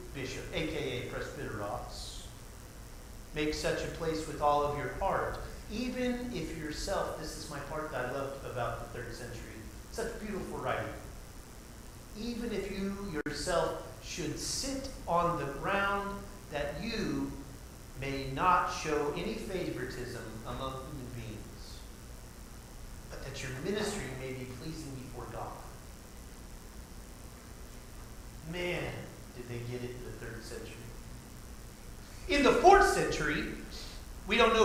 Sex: male